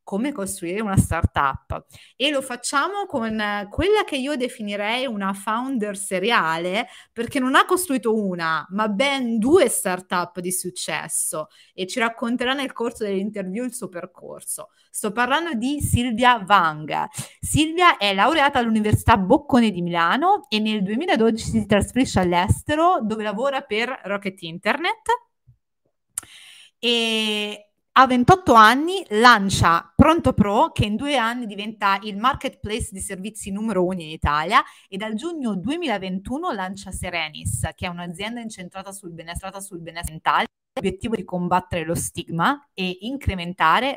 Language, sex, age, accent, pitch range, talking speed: Italian, female, 30-49, native, 185-255 Hz, 135 wpm